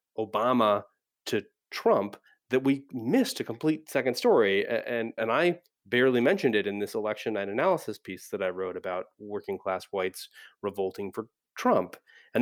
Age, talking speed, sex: 30-49, 160 wpm, male